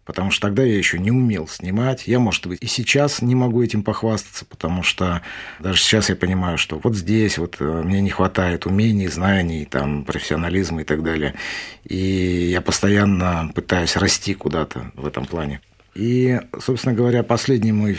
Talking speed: 165 wpm